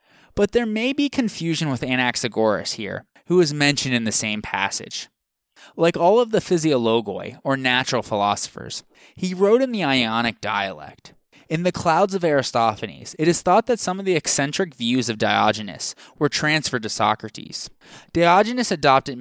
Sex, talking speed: male, 160 wpm